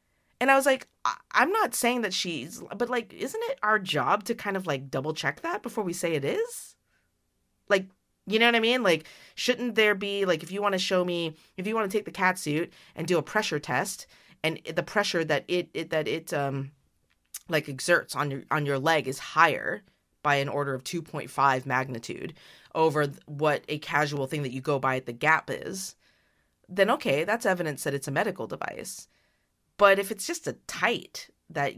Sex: female